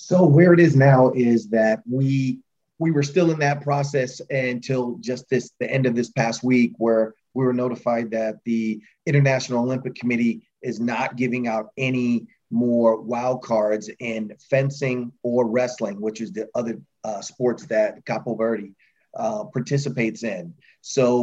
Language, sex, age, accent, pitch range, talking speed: English, male, 30-49, American, 115-135 Hz, 160 wpm